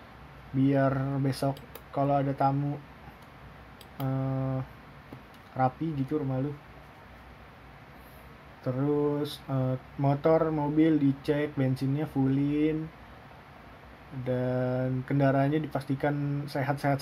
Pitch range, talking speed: 135-155 Hz, 75 wpm